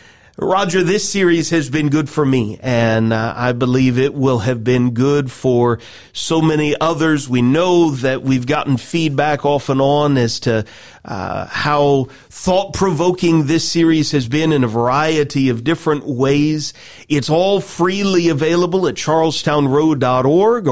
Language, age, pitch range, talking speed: English, 40-59, 130-180 Hz, 150 wpm